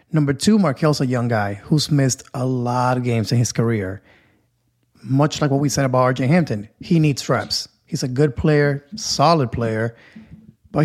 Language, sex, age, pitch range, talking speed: English, male, 30-49, 125-155 Hz, 185 wpm